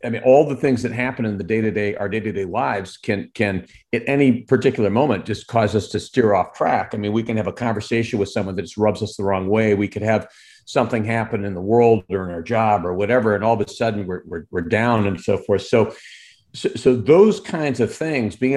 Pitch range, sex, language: 100-120 Hz, male, English